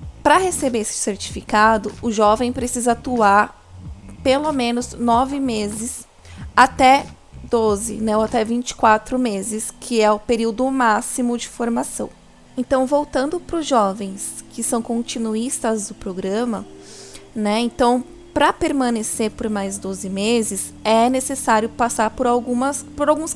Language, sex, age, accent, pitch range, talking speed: Portuguese, female, 20-39, Brazilian, 220-260 Hz, 130 wpm